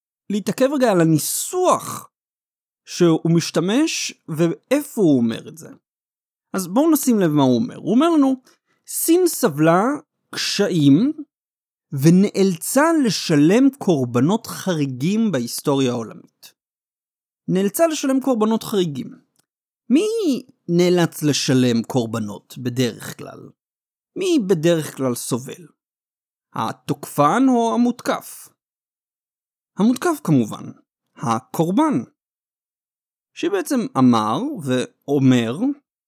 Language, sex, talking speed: Hebrew, male, 90 wpm